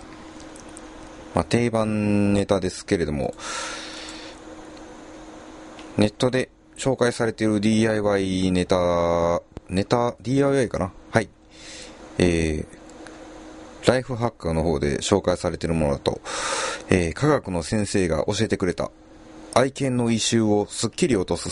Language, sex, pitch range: Japanese, male, 85-110 Hz